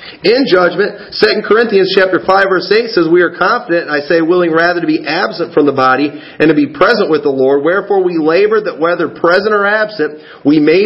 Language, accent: English, American